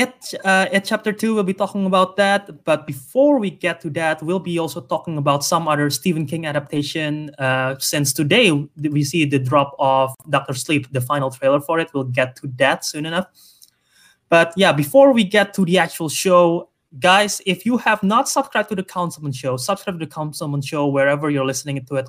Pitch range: 140-180 Hz